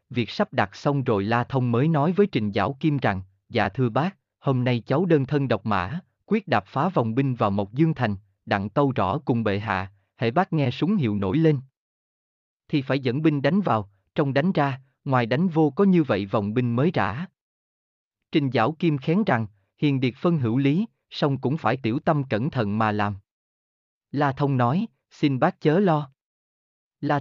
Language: Vietnamese